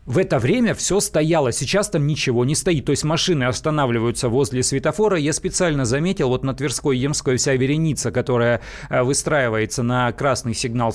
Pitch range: 125-160 Hz